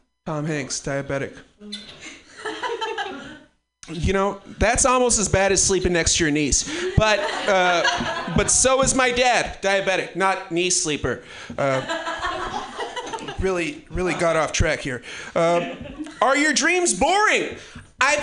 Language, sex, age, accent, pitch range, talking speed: English, male, 40-59, American, 205-305 Hz, 130 wpm